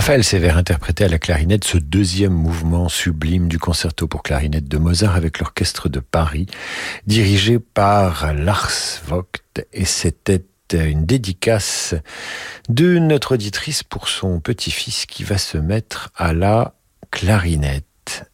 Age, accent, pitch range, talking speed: 50-69, French, 75-100 Hz, 135 wpm